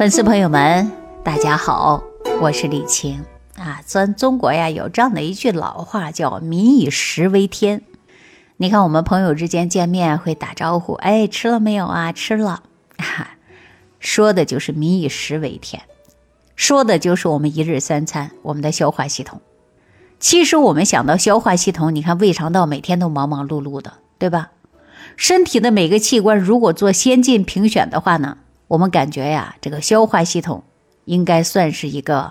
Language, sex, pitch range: Chinese, female, 155-220 Hz